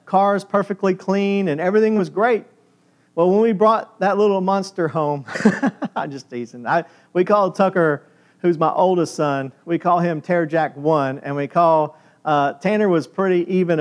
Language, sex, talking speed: English, male, 175 wpm